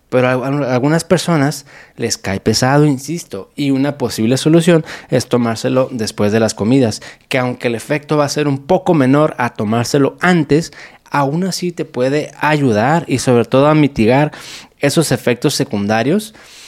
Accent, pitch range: Mexican, 125-160 Hz